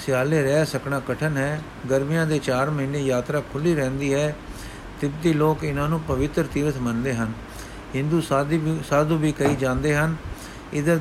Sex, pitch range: male, 130-155 Hz